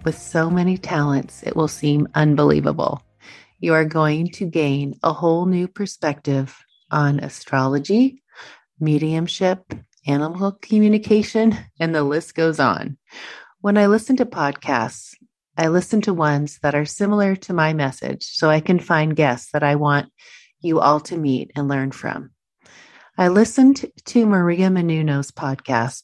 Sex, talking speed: female, 145 wpm